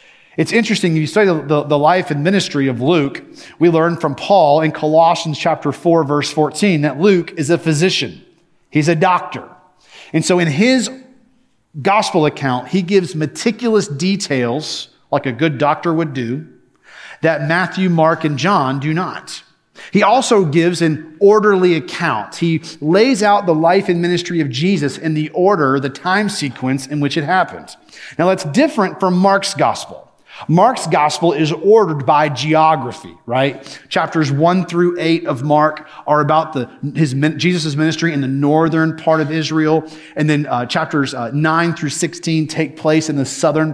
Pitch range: 150-185 Hz